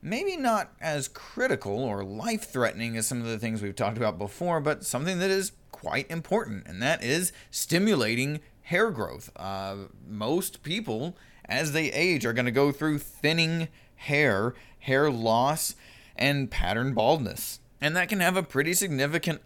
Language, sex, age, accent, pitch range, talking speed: English, male, 20-39, American, 110-140 Hz, 160 wpm